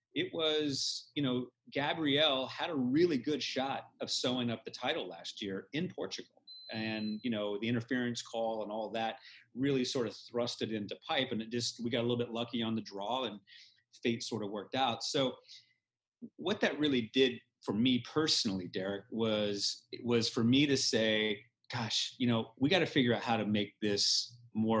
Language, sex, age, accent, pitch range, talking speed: English, male, 30-49, American, 110-140 Hz, 195 wpm